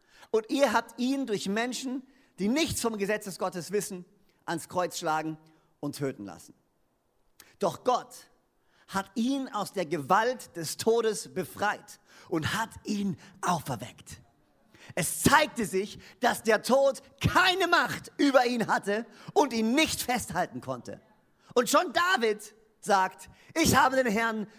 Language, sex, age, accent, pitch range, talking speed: German, male, 40-59, German, 180-255 Hz, 140 wpm